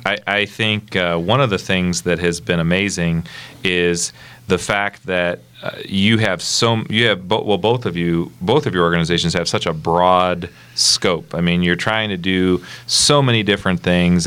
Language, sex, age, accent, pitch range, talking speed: English, male, 40-59, American, 85-100 Hz, 190 wpm